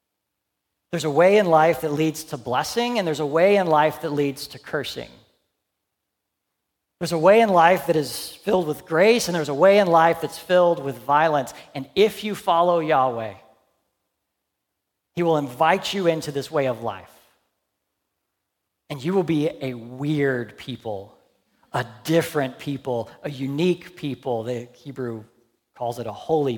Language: English